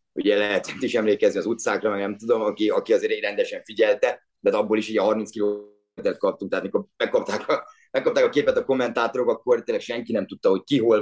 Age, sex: 30-49, male